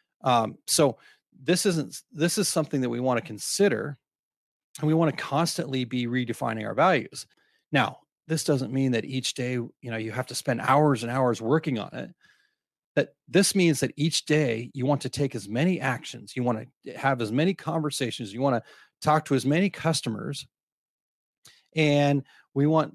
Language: English